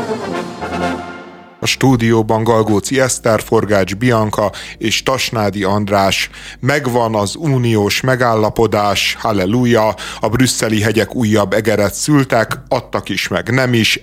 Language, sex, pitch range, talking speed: Hungarian, male, 100-125 Hz, 105 wpm